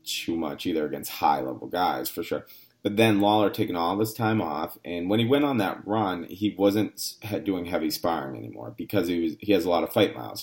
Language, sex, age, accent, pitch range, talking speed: English, male, 30-49, American, 85-115 Hz, 225 wpm